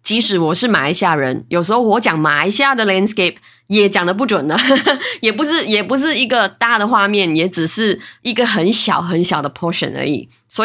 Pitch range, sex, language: 170-255 Hz, female, Chinese